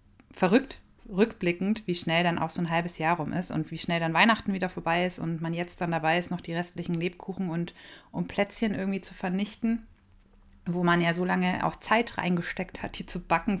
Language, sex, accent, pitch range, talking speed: German, female, German, 165-190 Hz, 210 wpm